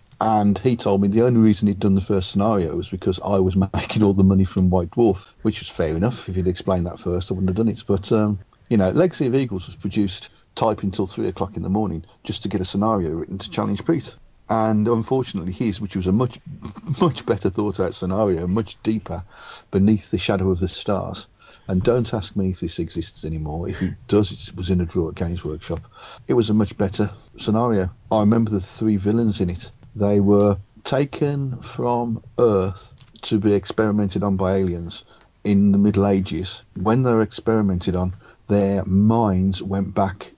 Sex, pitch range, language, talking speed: male, 95-110 Hz, English, 205 wpm